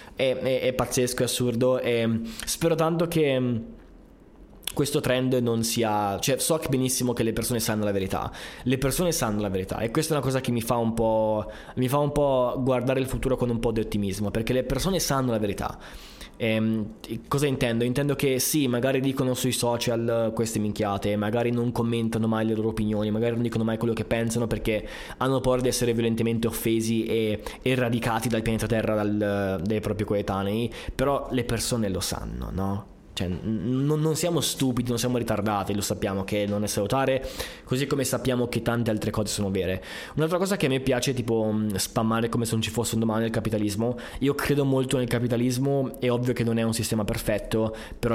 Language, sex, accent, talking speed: Italian, male, native, 200 wpm